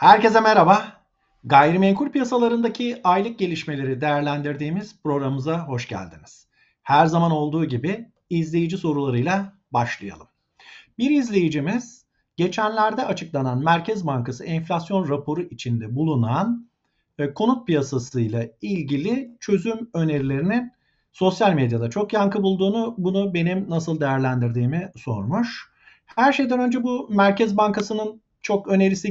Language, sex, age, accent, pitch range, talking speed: Turkish, male, 50-69, native, 135-205 Hz, 105 wpm